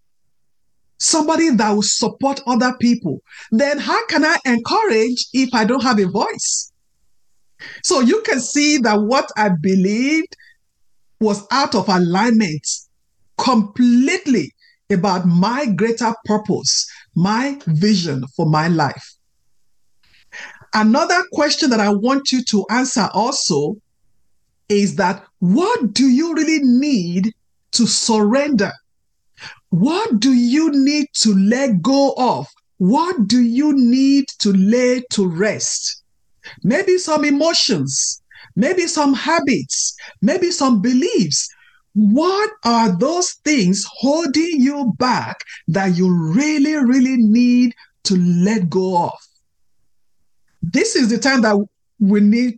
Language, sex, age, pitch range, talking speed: English, male, 50-69, 205-275 Hz, 120 wpm